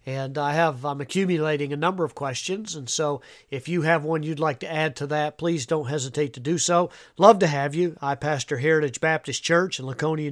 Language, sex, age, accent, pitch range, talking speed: English, male, 40-59, American, 140-170 Hz, 225 wpm